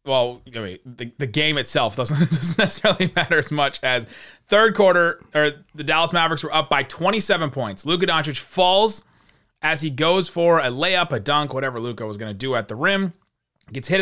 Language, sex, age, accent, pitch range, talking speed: English, male, 30-49, American, 125-170 Hz, 200 wpm